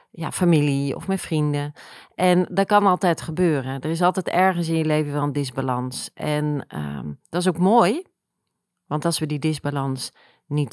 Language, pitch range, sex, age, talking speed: Dutch, 140-185 Hz, female, 40-59, 180 wpm